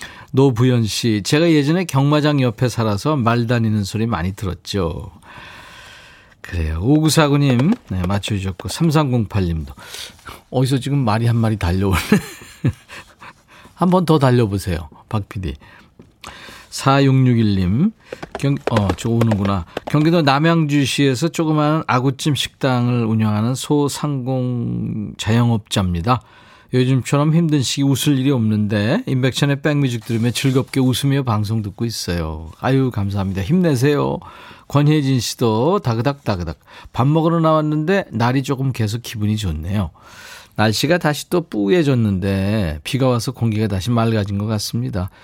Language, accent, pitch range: Korean, native, 105-150 Hz